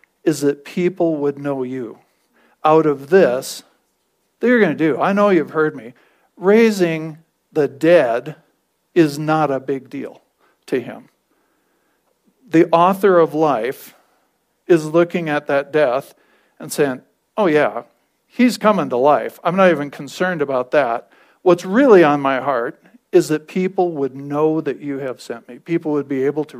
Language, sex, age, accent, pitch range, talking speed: English, male, 50-69, American, 140-165 Hz, 160 wpm